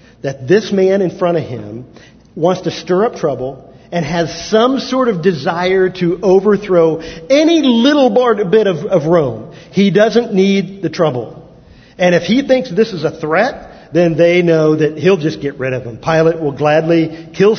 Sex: male